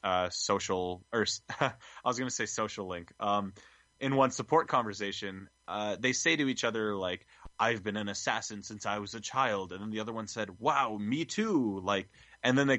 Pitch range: 105-135 Hz